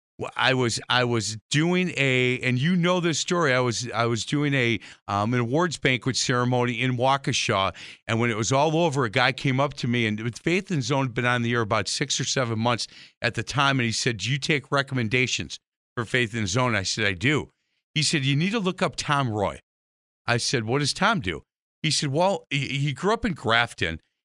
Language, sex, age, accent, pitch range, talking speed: English, male, 50-69, American, 125-160 Hz, 225 wpm